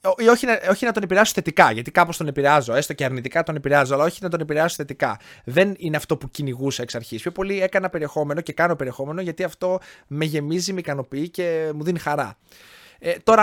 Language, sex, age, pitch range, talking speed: Greek, male, 20-39, 130-185 Hz, 205 wpm